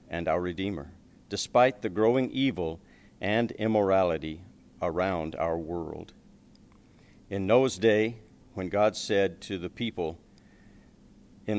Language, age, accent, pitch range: English, 50-69, American, 85-110 Hz